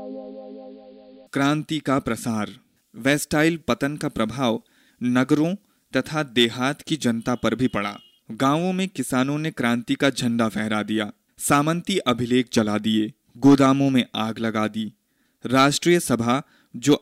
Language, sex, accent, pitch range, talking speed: Hindi, male, native, 115-145 Hz, 125 wpm